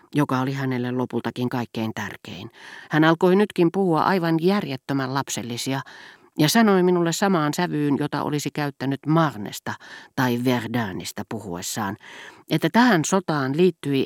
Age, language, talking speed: 40-59, Finnish, 125 wpm